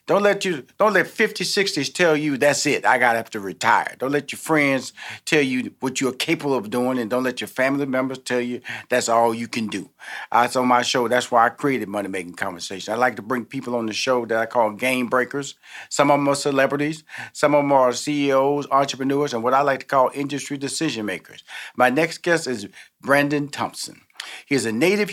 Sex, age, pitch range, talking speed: male, 40-59, 125-155 Hz, 225 wpm